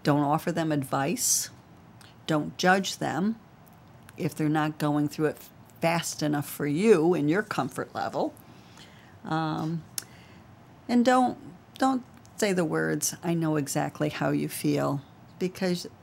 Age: 50-69